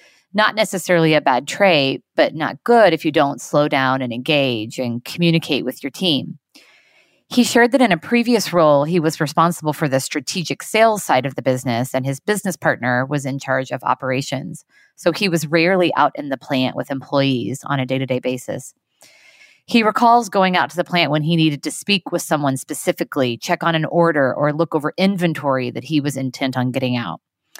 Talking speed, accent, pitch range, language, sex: 200 wpm, American, 140-175 Hz, English, female